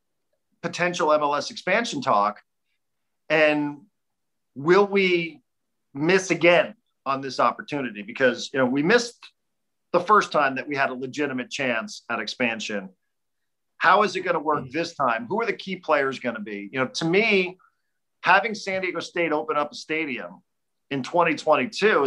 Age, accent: 40-59, American